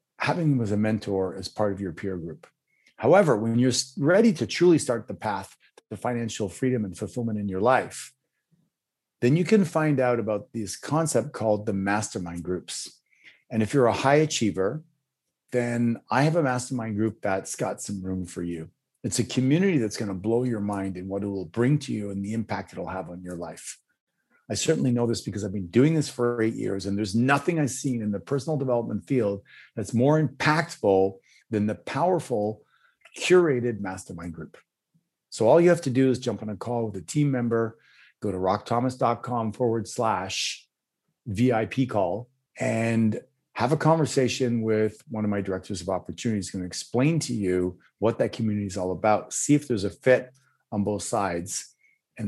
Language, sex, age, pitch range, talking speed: English, male, 40-59, 100-130 Hz, 190 wpm